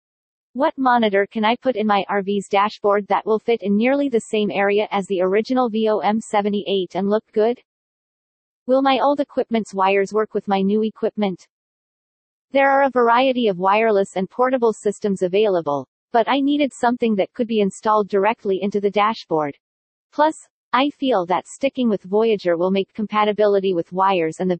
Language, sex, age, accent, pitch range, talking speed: English, female, 40-59, American, 190-240 Hz, 170 wpm